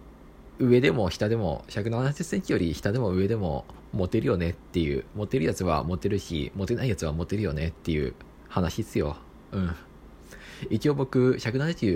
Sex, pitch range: male, 75-105 Hz